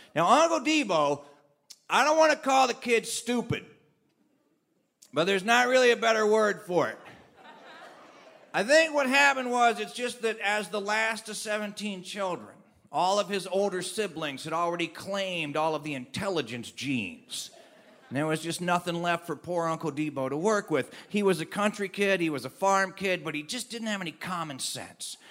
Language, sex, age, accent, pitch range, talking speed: English, male, 40-59, American, 170-235 Hz, 185 wpm